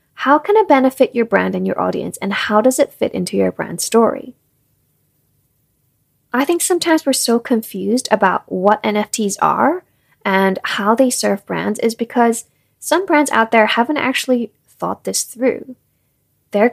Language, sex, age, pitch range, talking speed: English, female, 20-39, 190-255 Hz, 160 wpm